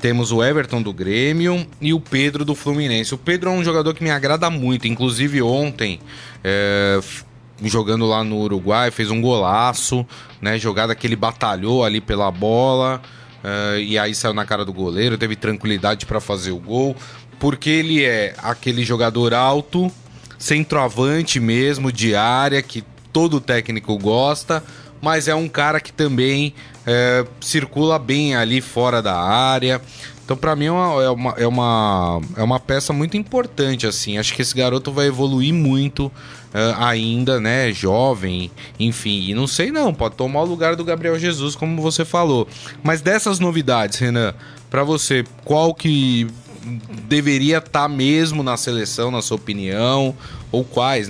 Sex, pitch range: male, 115-145 Hz